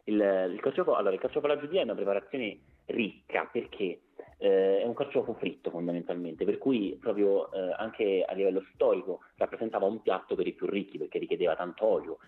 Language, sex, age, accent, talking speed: Italian, male, 30-49, native, 175 wpm